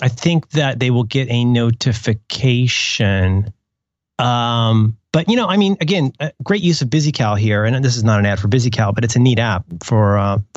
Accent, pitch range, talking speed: American, 110-140 Hz, 200 wpm